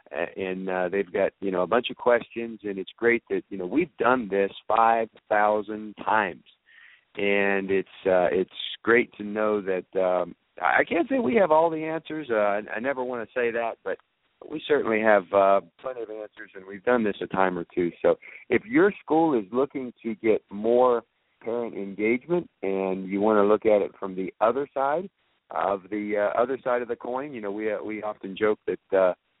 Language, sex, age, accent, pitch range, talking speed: English, male, 50-69, American, 100-120 Hz, 210 wpm